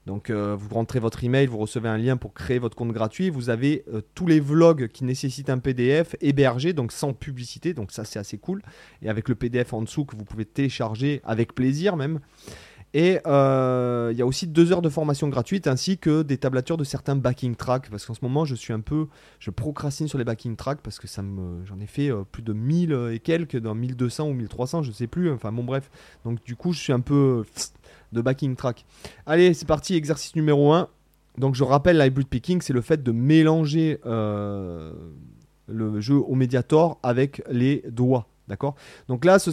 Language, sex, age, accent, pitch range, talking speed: French, male, 30-49, French, 115-150 Hz, 215 wpm